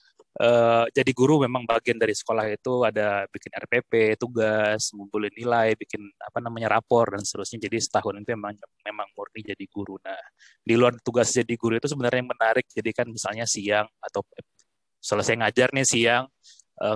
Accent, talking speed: native, 170 wpm